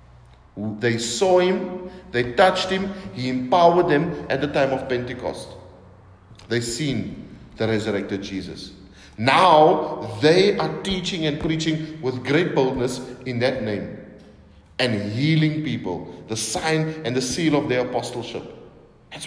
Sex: male